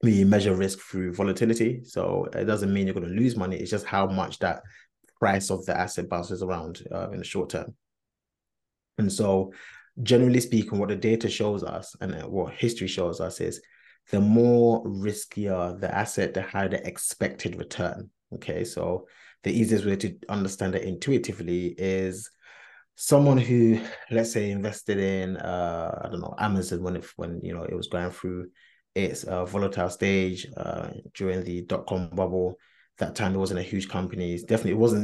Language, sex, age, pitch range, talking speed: English, male, 20-39, 95-105 Hz, 180 wpm